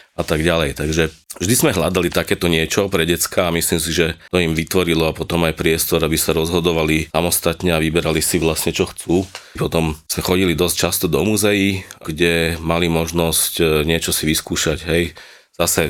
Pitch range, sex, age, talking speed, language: 75-85 Hz, male, 30-49, 175 wpm, Czech